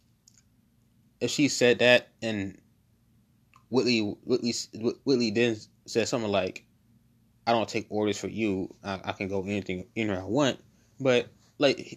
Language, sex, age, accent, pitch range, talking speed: English, male, 20-39, American, 110-120 Hz, 140 wpm